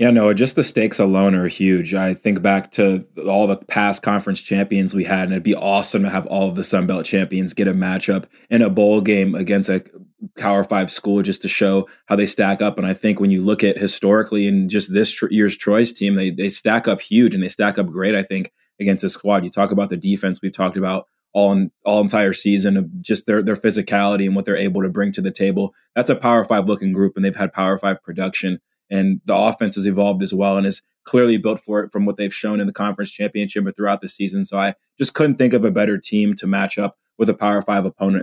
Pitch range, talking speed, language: 95-105 Hz, 250 wpm, English